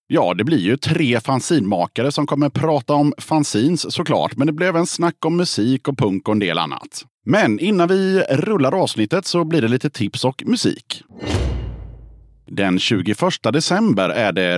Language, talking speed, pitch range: Swedish, 175 wpm, 115-165 Hz